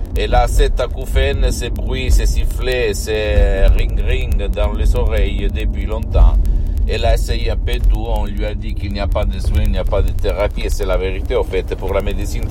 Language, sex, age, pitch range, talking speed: Italian, male, 50-69, 85-100 Hz, 220 wpm